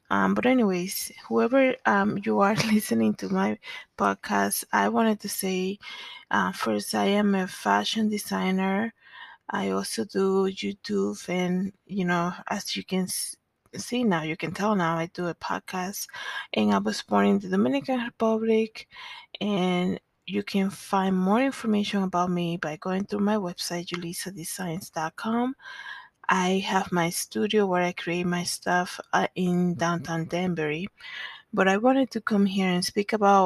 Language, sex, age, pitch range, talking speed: English, female, 20-39, 180-220 Hz, 155 wpm